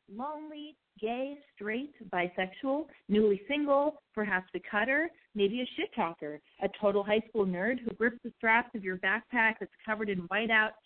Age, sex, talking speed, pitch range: 30-49, female, 160 wpm, 210-315 Hz